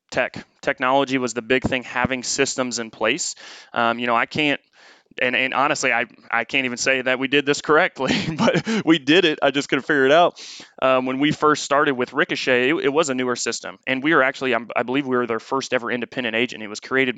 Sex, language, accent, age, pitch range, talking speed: male, English, American, 20-39, 120-130 Hz, 240 wpm